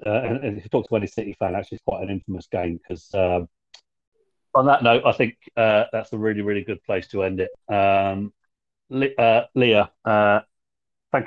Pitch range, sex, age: 100-120 Hz, male, 40-59